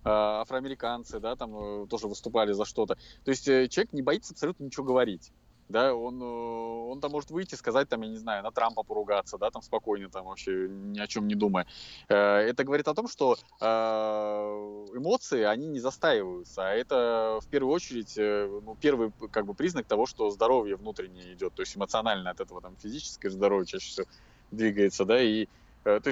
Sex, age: male, 20-39